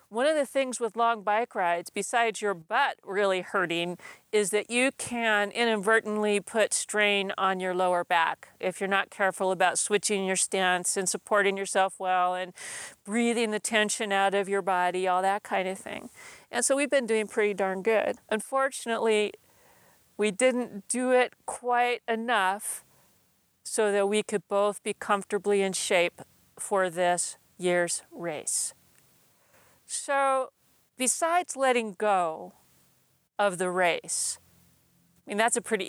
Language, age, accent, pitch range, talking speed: English, 40-59, American, 190-235 Hz, 150 wpm